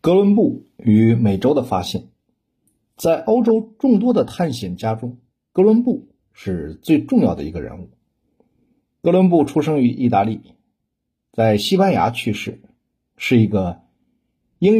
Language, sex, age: Chinese, male, 50-69